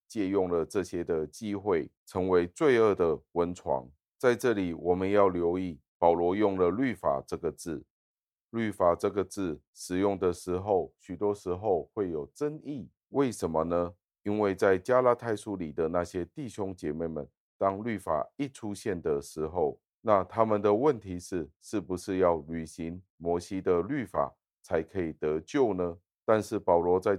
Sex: male